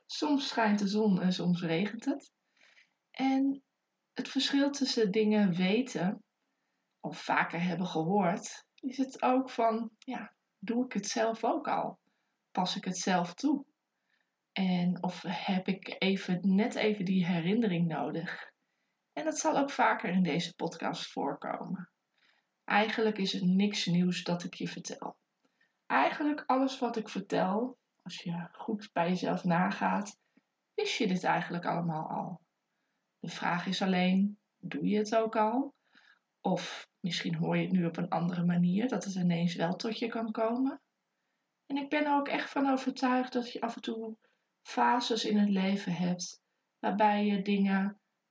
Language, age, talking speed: Dutch, 20-39, 160 wpm